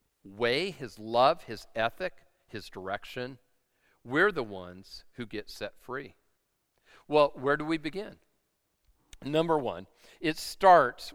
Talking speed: 125 wpm